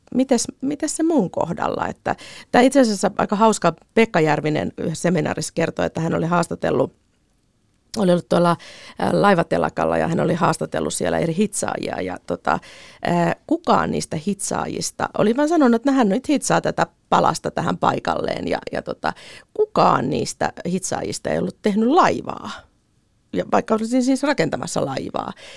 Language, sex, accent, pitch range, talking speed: Finnish, female, native, 175-270 Hz, 145 wpm